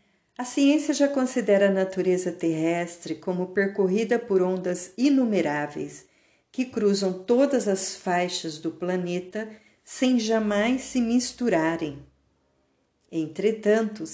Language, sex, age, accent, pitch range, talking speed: Portuguese, female, 50-69, Brazilian, 165-215 Hz, 100 wpm